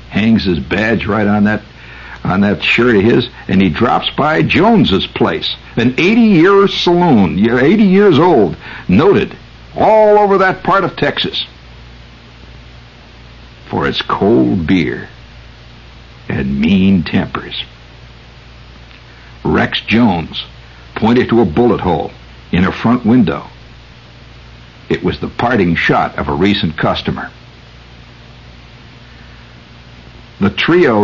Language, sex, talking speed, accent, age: English, male, 115 wpm, American, 60-79